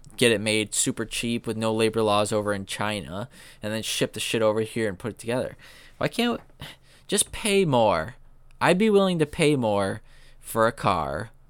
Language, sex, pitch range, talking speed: English, male, 105-145 Hz, 195 wpm